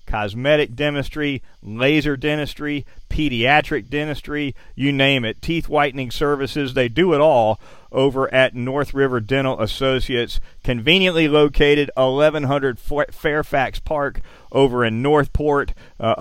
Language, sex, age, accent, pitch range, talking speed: English, male, 40-59, American, 120-150 Hz, 115 wpm